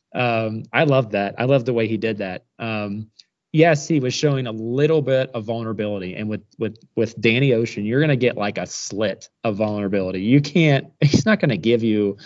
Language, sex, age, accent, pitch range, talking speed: English, male, 20-39, American, 110-150 Hz, 205 wpm